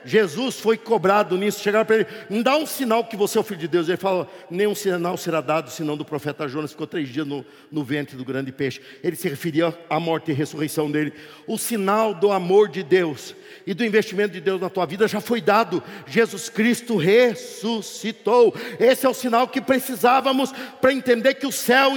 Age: 50-69